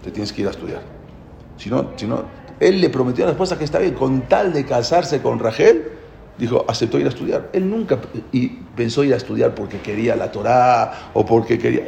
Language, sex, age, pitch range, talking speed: English, male, 40-59, 135-210 Hz, 210 wpm